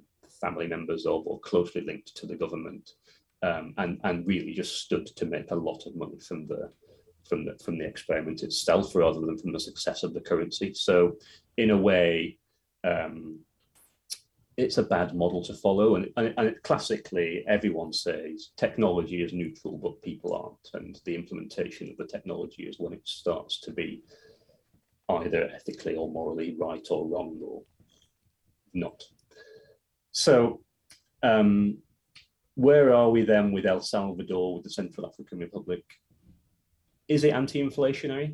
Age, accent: 30-49, British